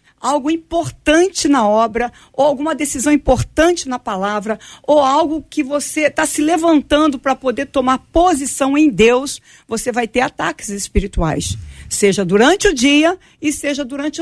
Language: Portuguese